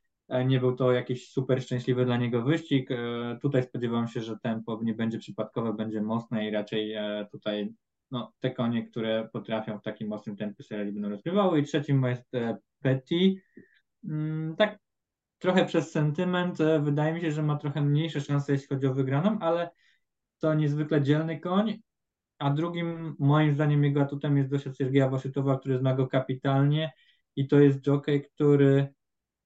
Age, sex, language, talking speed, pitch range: 20-39, male, Polish, 160 wpm, 115-145 Hz